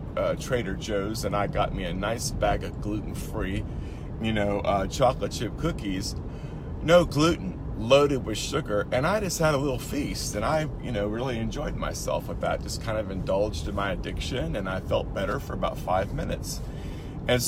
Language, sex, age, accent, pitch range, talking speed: English, male, 40-59, American, 100-130 Hz, 190 wpm